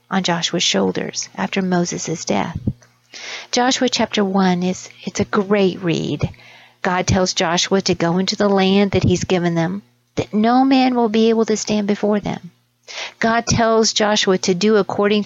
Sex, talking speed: female, 165 wpm